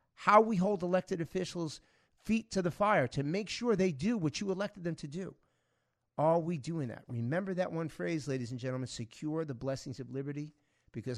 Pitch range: 120-160 Hz